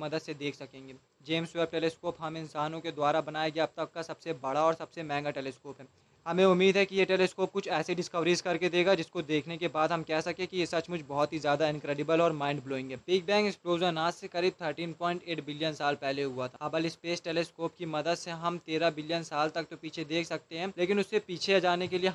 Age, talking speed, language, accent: 20-39, 235 wpm, Hindi, native